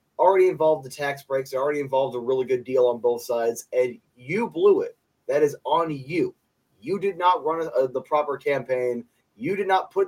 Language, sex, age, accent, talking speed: English, male, 20-39, American, 195 wpm